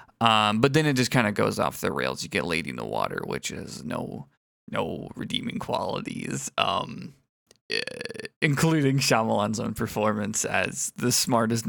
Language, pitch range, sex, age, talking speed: English, 110-140 Hz, male, 20-39, 160 wpm